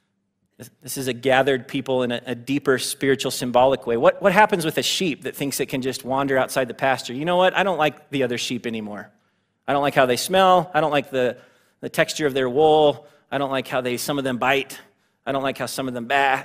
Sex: male